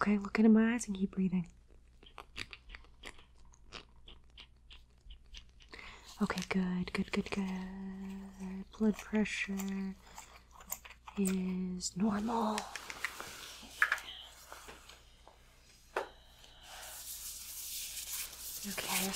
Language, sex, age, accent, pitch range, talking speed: English, female, 30-49, American, 190-230 Hz, 55 wpm